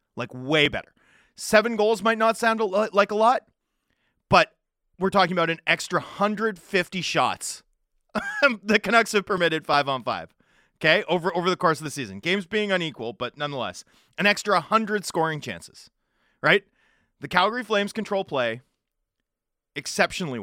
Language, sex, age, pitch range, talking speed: English, male, 30-49, 135-205 Hz, 145 wpm